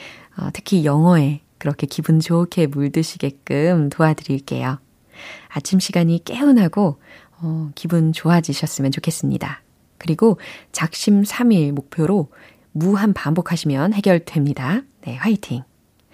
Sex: female